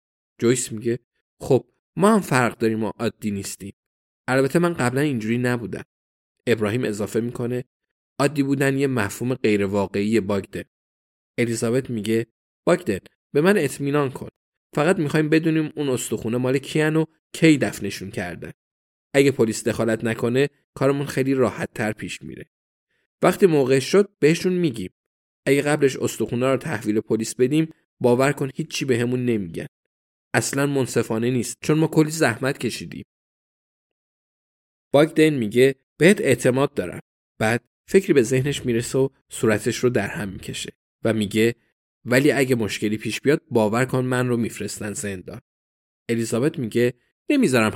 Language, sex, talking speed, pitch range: Persian, male, 140 wpm, 110-140 Hz